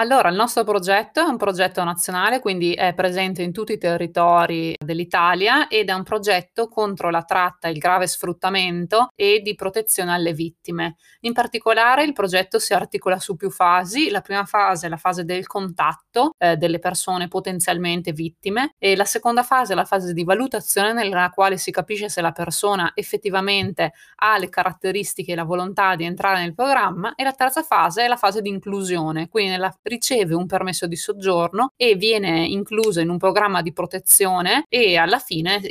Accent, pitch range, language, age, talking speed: native, 175-210 Hz, Italian, 20-39, 180 wpm